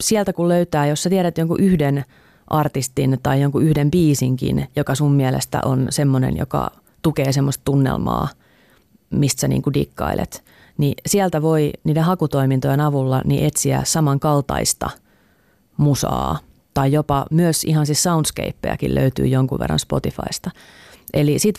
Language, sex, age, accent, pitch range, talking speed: Finnish, female, 30-49, native, 130-150 Hz, 135 wpm